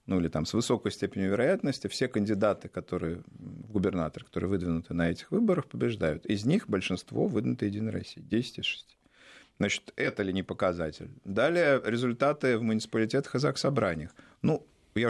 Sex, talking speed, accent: male, 155 wpm, native